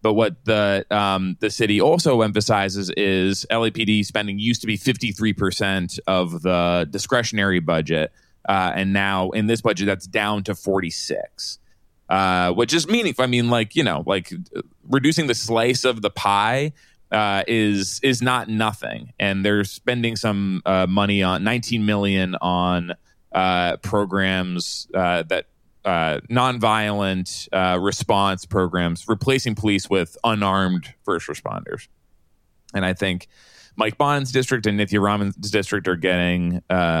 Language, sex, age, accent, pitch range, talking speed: English, male, 20-39, American, 95-115 Hz, 145 wpm